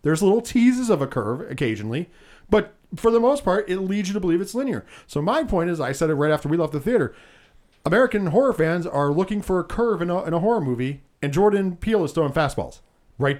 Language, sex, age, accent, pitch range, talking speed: English, male, 40-59, American, 140-190 Hz, 235 wpm